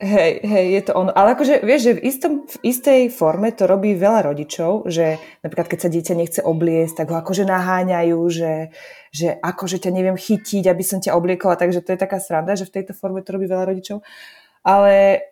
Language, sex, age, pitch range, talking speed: Slovak, female, 20-39, 175-200 Hz, 210 wpm